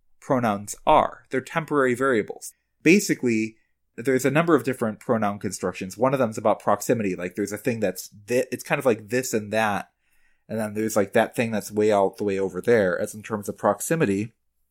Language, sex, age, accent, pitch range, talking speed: English, male, 30-49, American, 105-140 Hz, 195 wpm